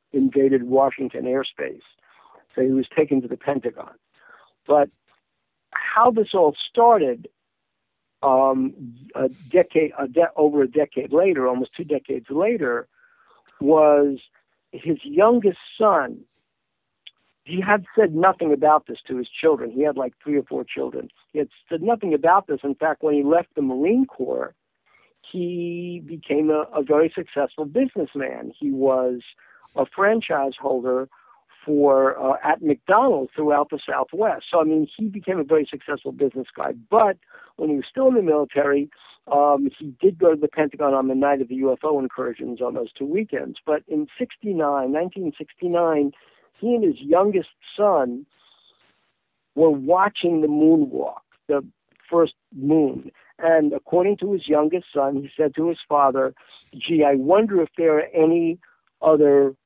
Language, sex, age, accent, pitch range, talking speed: English, male, 60-79, American, 140-175 Hz, 150 wpm